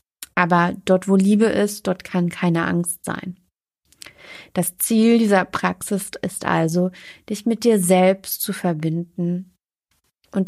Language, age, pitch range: German, 30-49, 175-205 Hz